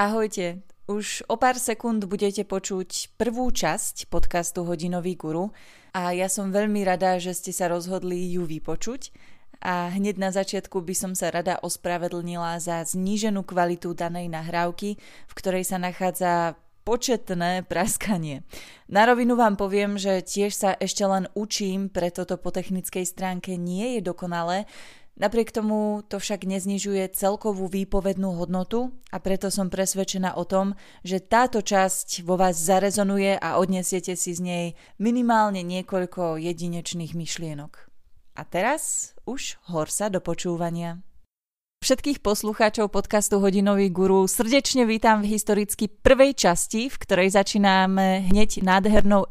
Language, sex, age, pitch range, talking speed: Slovak, female, 20-39, 180-205 Hz, 135 wpm